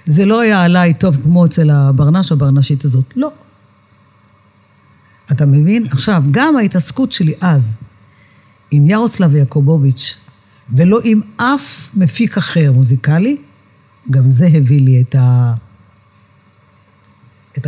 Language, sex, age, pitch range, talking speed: Hebrew, female, 50-69, 130-190 Hz, 115 wpm